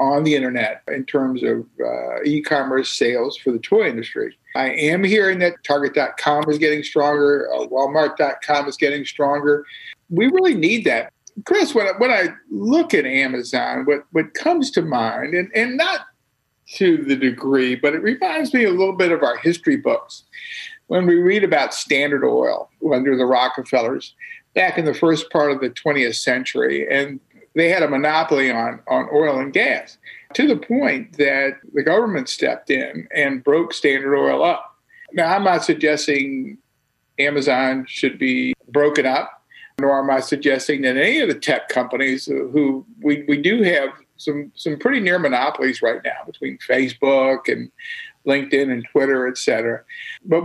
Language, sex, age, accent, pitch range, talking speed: English, male, 50-69, American, 135-220 Hz, 170 wpm